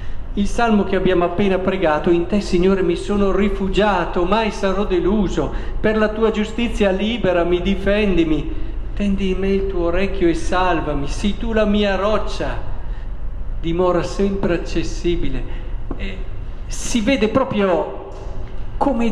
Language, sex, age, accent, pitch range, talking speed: Italian, male, 50-69, native, 170-230 Hz, 130 wpm